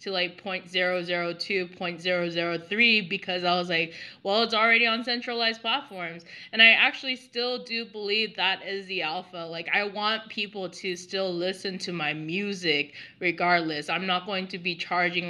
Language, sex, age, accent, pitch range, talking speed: English, female, 20-39, American, 170-205 Hz, 160 wpm